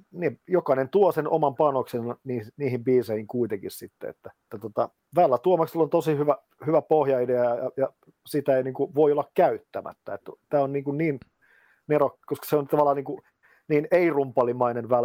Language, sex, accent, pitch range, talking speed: Finnish, male, native, 120-145 Hz, 170 wpm